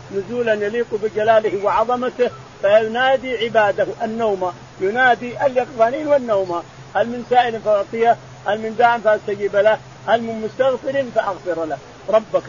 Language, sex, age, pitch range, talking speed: Arabic, male, 50-69, 195-245 Hz, 120 wpm